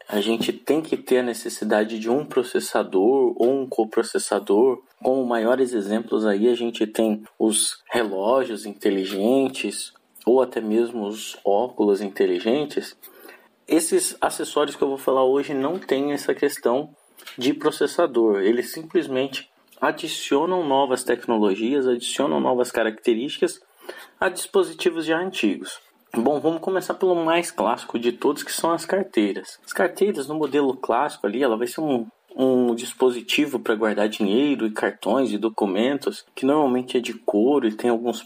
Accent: Brazilian